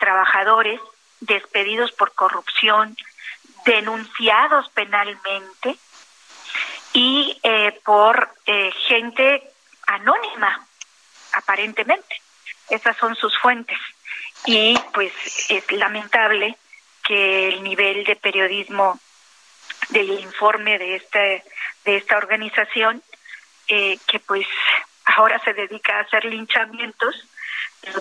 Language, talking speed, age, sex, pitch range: Spanish, 90 wpm, 40-59, female, 200-230 Hz